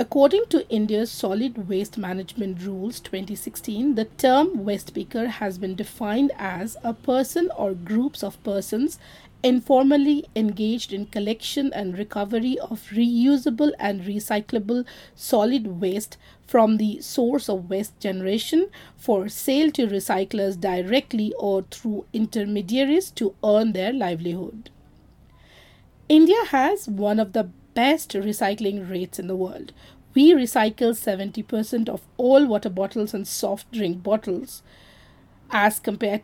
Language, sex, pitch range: English, female, 200-255 Hz